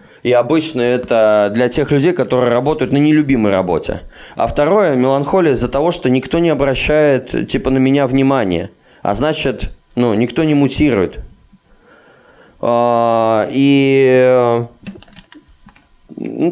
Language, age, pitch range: Russian, 20-39, 115-140 Hz